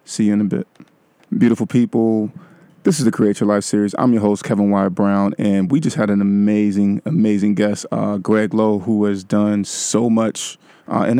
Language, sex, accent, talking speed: English, male, American, 205 wpm